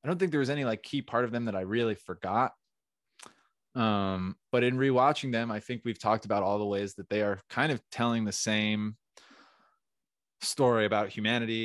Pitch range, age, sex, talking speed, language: 105-125 Hz, 20-39, male, 200 wpm, English